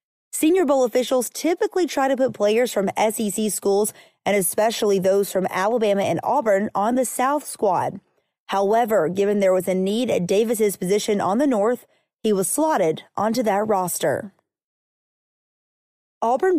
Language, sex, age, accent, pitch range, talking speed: English, female, 30-49, American, 200-260 Hz, 150 wpm